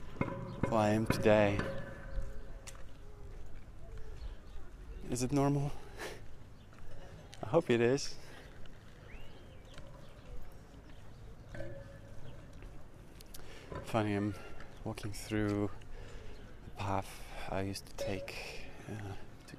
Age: 20-39